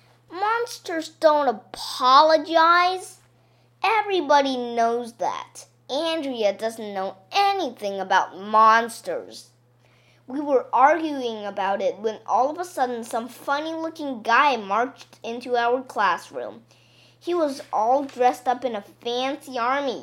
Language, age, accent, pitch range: Chinese, 20-39, American, 200-315 Hz